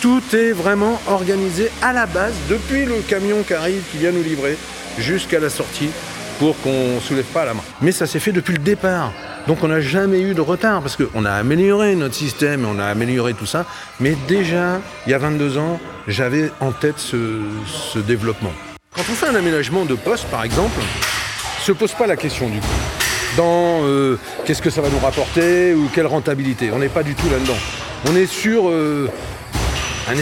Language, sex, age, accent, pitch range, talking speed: French, male, 40-59, French, 140-195 Hz, 205 wpm